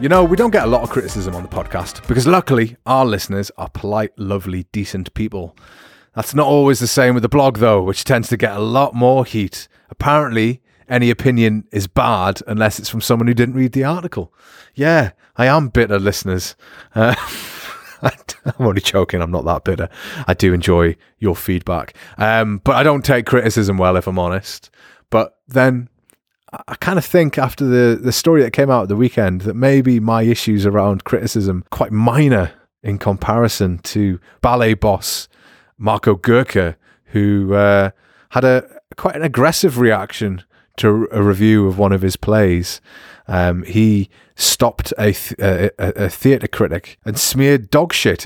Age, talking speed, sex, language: 30-49, 175 wpm, male, English